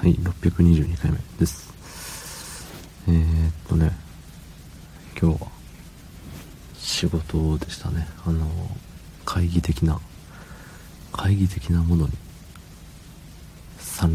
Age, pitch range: 40-59, 80-90 Hz